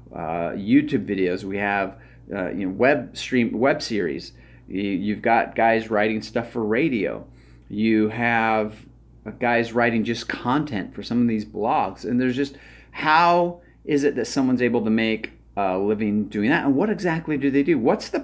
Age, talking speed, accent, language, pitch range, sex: 30-49, 180 wpm, American, English, 105-140 Hz, male